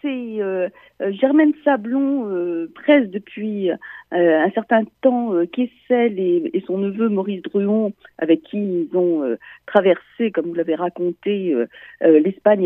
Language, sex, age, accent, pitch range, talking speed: French, female, 50-69, French, 185-265 Hz, 115 wpm